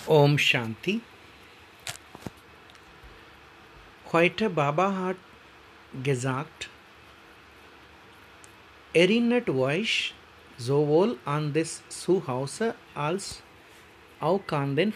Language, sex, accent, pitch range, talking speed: Hindi, male, native, 140-195 Hz, 55 wpm